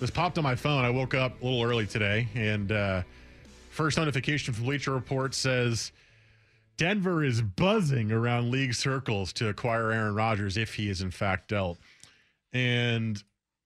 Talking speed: 165 wpm